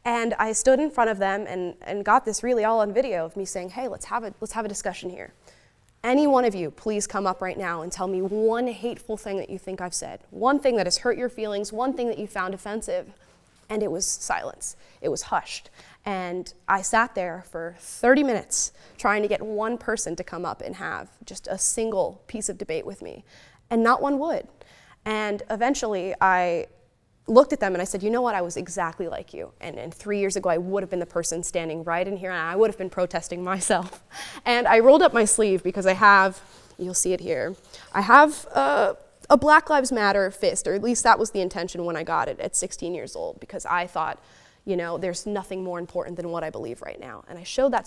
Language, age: English, 20-39